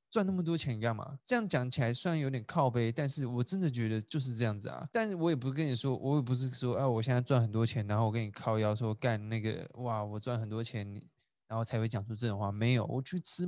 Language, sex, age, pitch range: Chinese, male, 20-39, 115-170 Hz